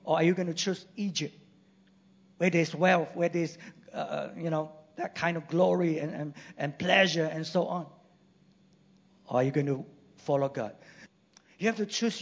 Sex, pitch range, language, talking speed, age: male, 170-205 Hz, English, 180 wpm, 50-69